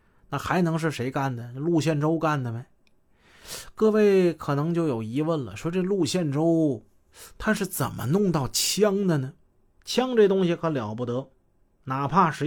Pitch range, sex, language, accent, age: 125-175 Hz, male, Chinese, native, 30-49